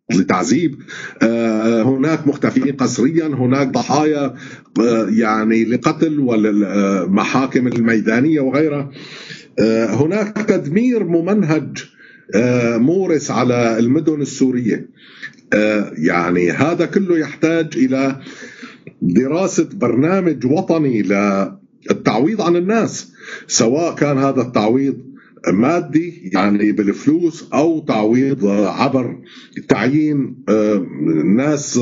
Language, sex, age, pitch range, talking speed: Arabic, male, 50-69, 120-165 Hz, 75 wpm